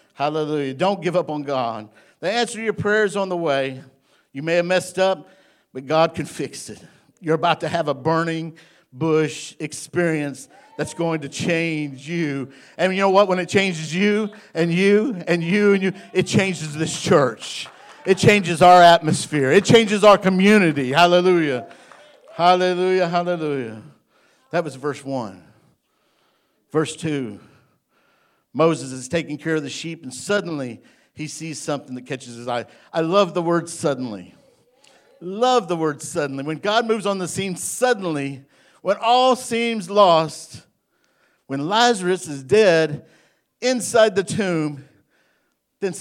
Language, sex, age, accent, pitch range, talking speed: English, male, 50-69, American, 145-195 Hz, 150 wpm